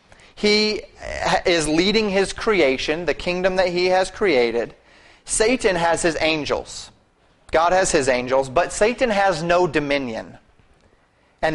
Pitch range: 140-180 Hz